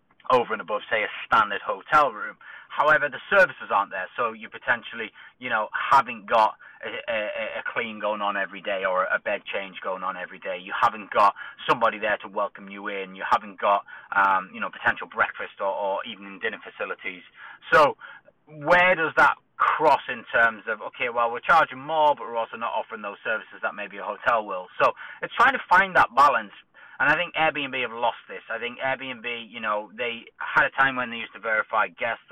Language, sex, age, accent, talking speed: English, male, 30-49, British, 210 wpm